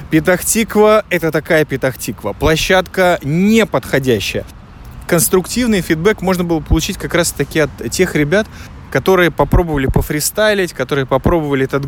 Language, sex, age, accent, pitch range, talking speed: Russian, male, 20-39, native, 130-180 Hz, 125 wpm